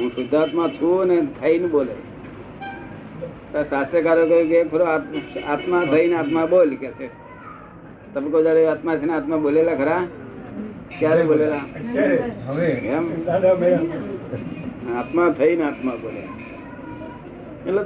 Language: Gujarati